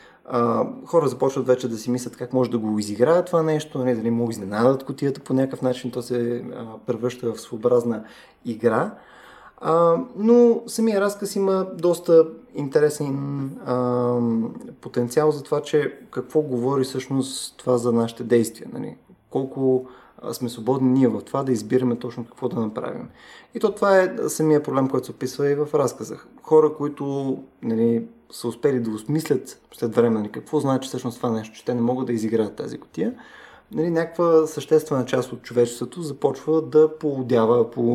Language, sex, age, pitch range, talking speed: Bulgarian, male, 20-39, 120-155 Hz, 160 wpm